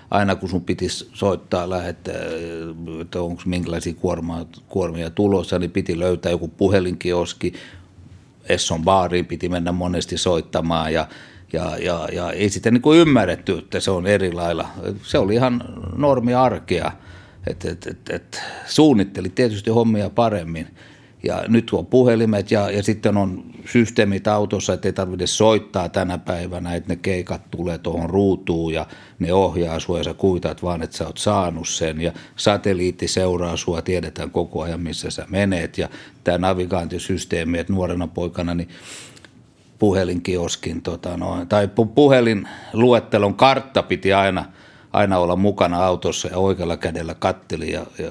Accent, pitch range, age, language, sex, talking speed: native, 85-100 Hz, 60-79, Finnish, male, 140 wpm